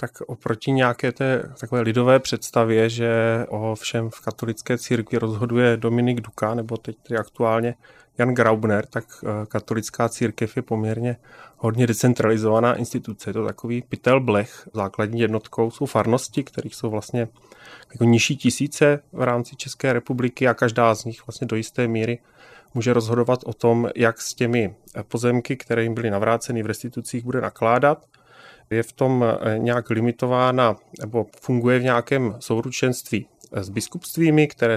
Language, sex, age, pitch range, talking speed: Czech, male, 30-49, 110-125 Hz, 145 wpm